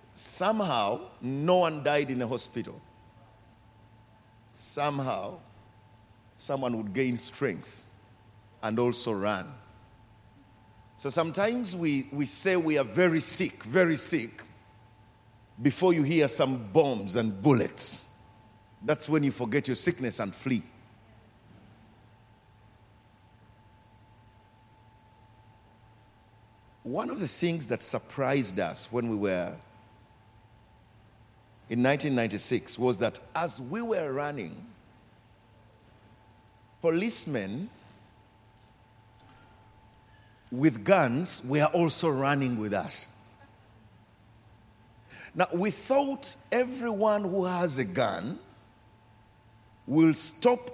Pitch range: 110-140 Hz